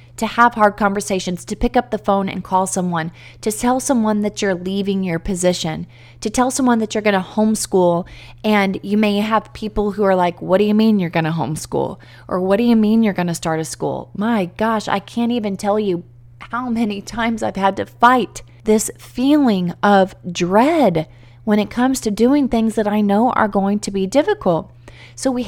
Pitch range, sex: 180-230 Hz, female